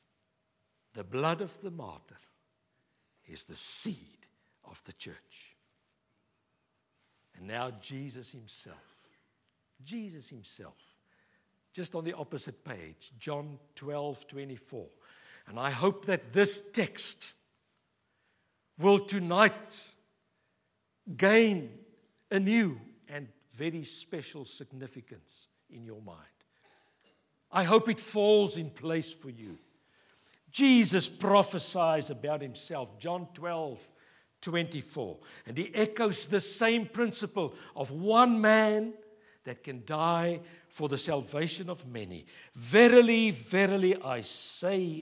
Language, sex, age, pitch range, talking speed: English, male, 60-79, 140-210 Hz, 105 wpm